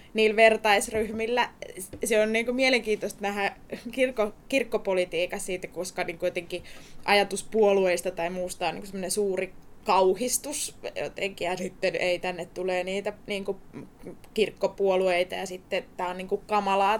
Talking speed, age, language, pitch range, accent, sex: 115 wpm, 20-39, Finnish, 185-215 Hz, native, female